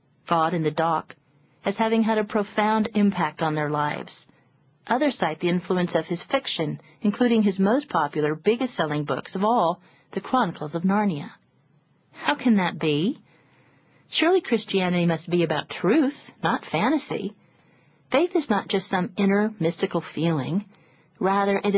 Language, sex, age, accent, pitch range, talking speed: English, female, 40-59, American, 160-220 Hz, 150 wpm